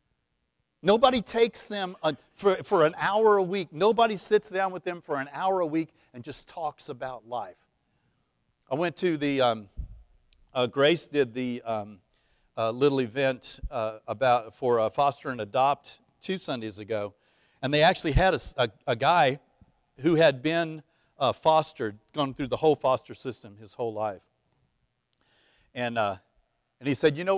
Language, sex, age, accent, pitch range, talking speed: English, male, 50-69, American, 130-195 Hz, 170 wpm